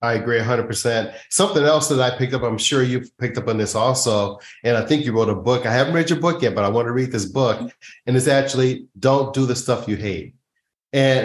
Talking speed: 250 wpm